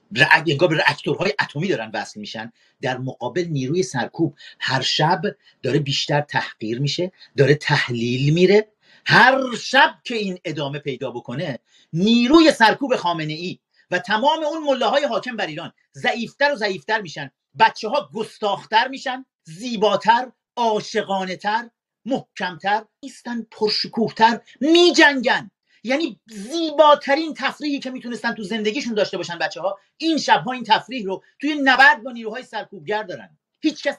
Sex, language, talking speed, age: male, Persian, 135 wpm, 40-59